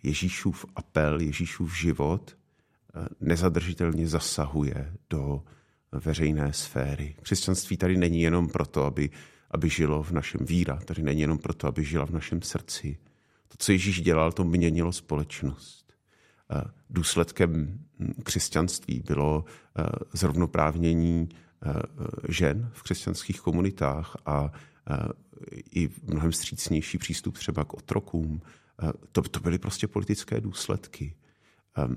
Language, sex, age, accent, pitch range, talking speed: Czech, male, 50-69, native, 75-95 Hz, 105 wpm